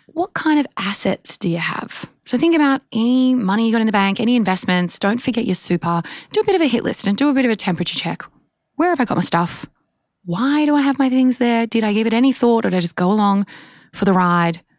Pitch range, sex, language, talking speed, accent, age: 180-240 Hz, female, English, 270 wpm, Australian, 20-39